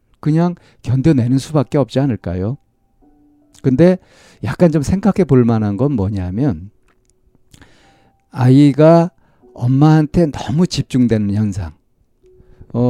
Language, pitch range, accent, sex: Korean, 105-140 Hz, native, male